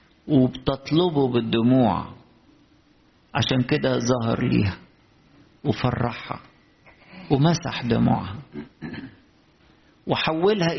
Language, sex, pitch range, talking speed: English, male, 105-130 Hz, 55 wpm